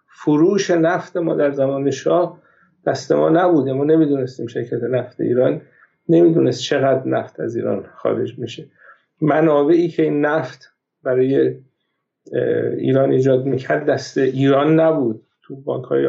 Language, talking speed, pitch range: Persian, 125 wpm, 130-160 Hz